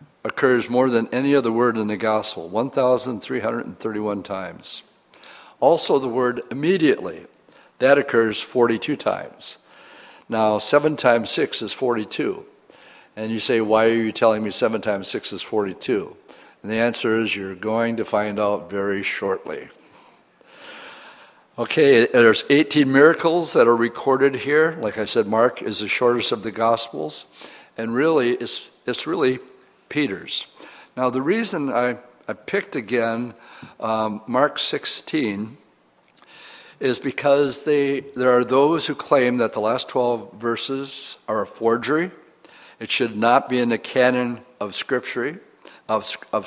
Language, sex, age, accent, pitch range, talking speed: English, male, 60-79, American, 110-135 Hz, 140 wpm